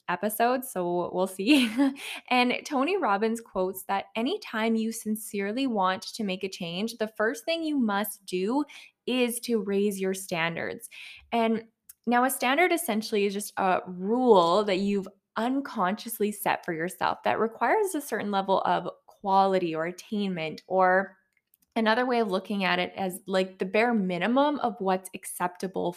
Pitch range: 190-235 Hz